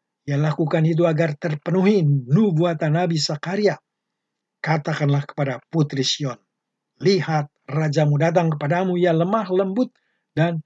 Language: Indonesian